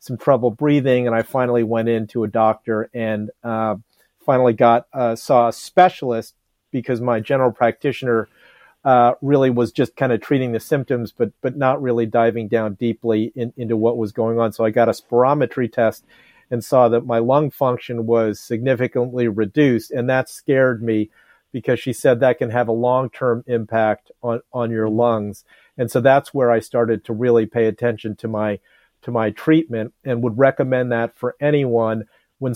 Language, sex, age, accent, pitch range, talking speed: English, male, 40-59, American, 115-135 Hz, 180 wpm